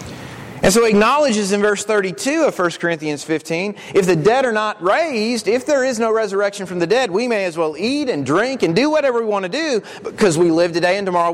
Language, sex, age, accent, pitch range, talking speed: English, male, 40-59, American, 185-240 Hz, 235 wpm